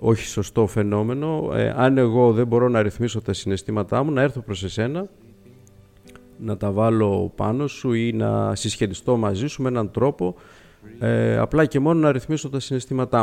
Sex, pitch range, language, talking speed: male, 100-140 Hz, Greek, 170 wpm